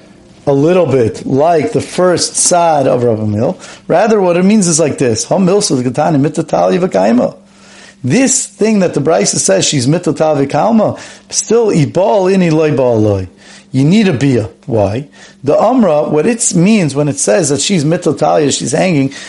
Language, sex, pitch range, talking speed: English, male, 145-195 Hz, 140 wpm